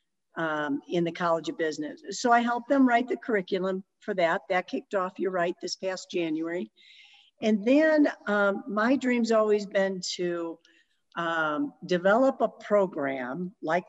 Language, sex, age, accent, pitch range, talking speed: English, female, 50-69, American, 175-230 Hz, 155 wpm